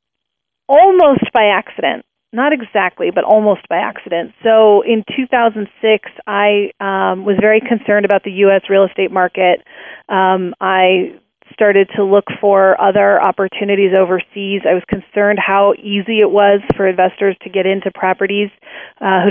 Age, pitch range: 30-49, 185-205 Hz